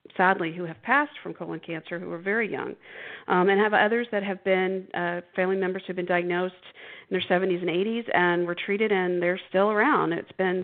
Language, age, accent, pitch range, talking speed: English, 40-59, American, 170-210 Hz, 220 wpm